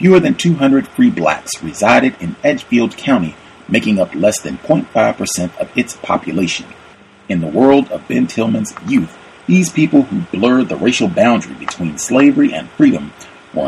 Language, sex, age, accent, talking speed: English, male, 40-59, American, 160 wpm